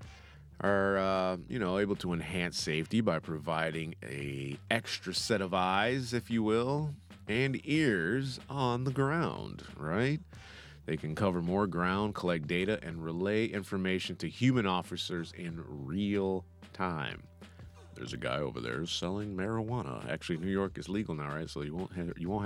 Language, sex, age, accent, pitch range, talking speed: English, male, 30-49, American, 85-120 Hz, 160 wpm